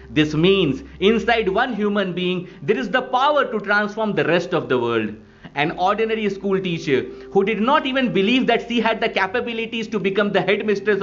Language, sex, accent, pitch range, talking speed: English, male, Indian, 175-225 Hz, 190 wpm